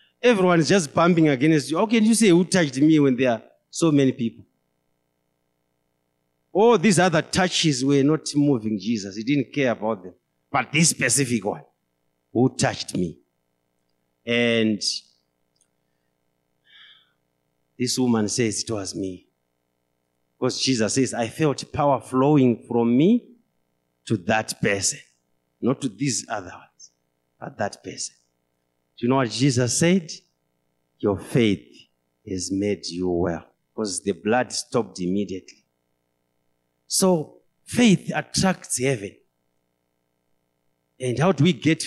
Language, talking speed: English, 130 wpm